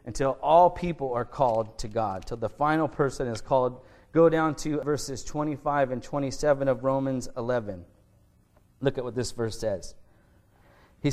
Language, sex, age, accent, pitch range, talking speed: English, male, 30-49, American, 120-150 Hz, 160 wpm